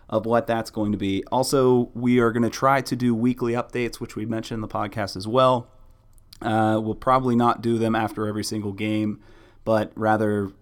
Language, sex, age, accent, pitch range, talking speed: English, male, 30-49, American, 100-115 Hz, 205 wpm